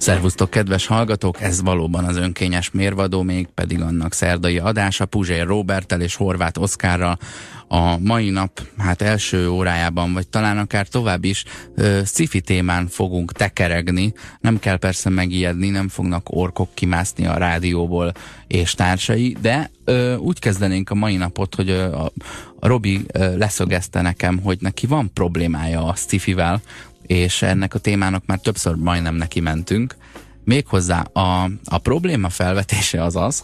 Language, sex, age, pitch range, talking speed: Hungarian, male, 20-39, 85-100 Hz, 145 wpm